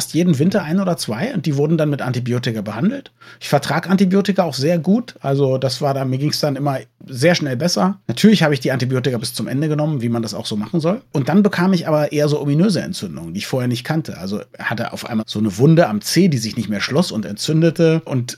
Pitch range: 130-170 Hz